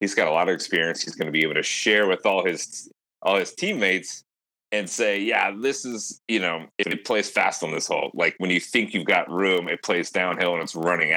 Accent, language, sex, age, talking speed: American, English, male, 30-49, 240 wpm